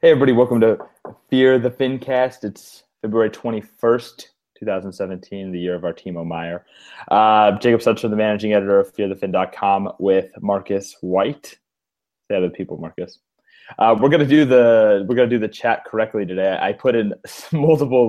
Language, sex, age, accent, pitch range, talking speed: English, male, 20-39, American, 90-110 Hz, 165 wpm